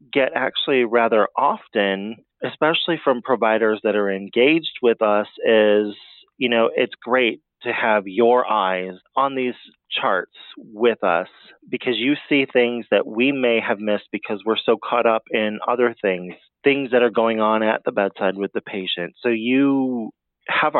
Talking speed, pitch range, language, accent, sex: 165 wpm, 105-125 Hz, English, American, male